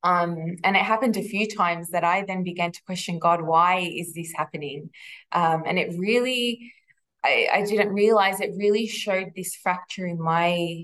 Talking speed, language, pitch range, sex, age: 185 wpm, English, 165-185 Hz, female, 20-39